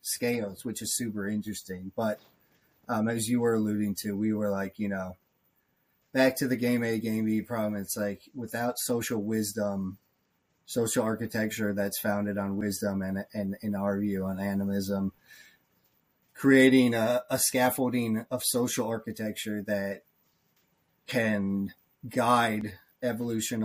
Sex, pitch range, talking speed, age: male, 105-125 Hz, 135 wpm, 30-49